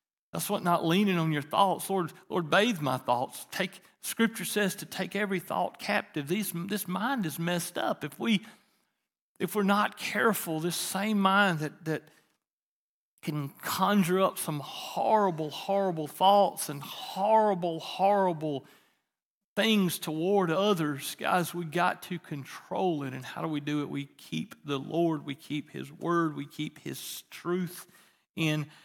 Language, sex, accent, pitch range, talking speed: English, male, American, 155-195 Hz, 155 wpm